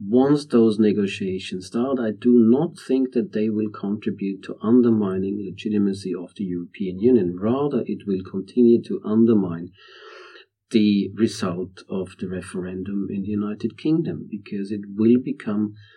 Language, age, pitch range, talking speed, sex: English, 50-69, 100-120 Hz, 145 wpm, male